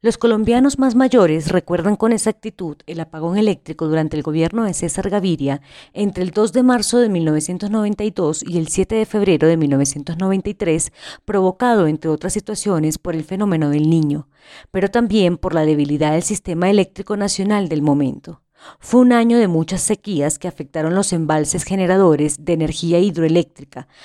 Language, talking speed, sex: Spanish, 160 wpm, female